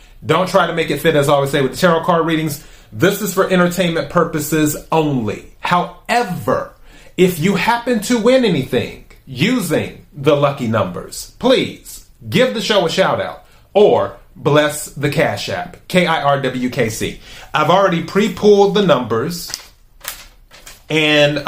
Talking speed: 140 wpm